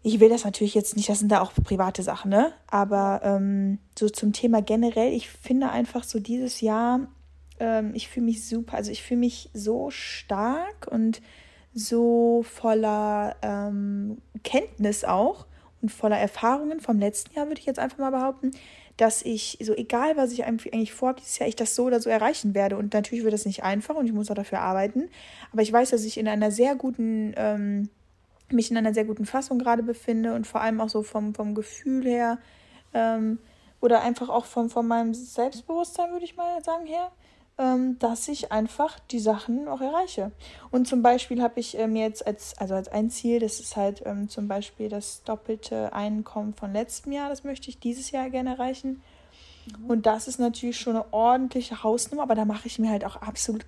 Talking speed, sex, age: 195 wpm, female, 20-39